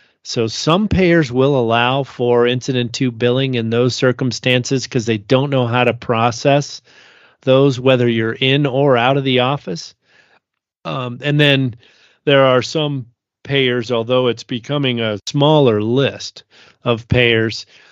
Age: 40-59